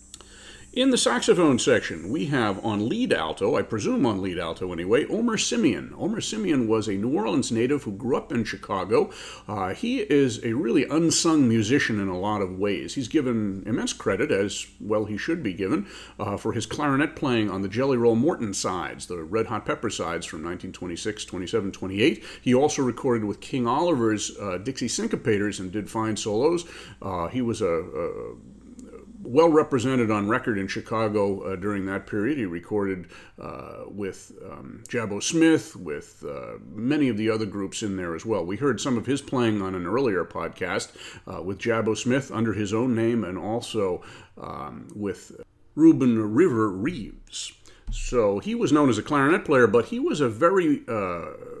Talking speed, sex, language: 180 wpm, male, English